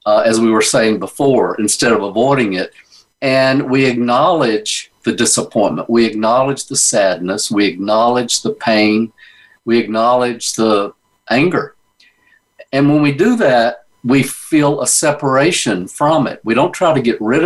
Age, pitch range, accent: 50-69, 110-150 Hz, American